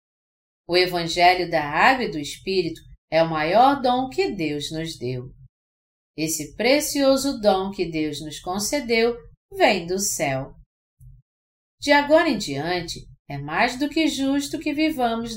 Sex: female